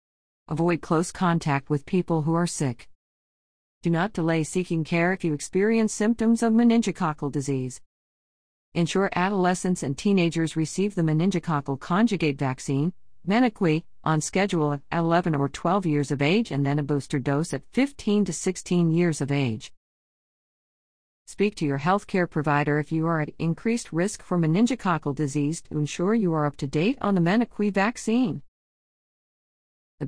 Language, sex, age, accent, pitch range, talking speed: English, female, 50-69, American, 145-190 Hz, 155 wpm